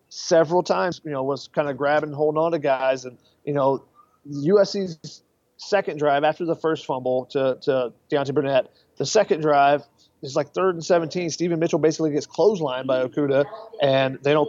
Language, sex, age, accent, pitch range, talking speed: English, male, 30-49, American, 140-165 Hz, 185 wpm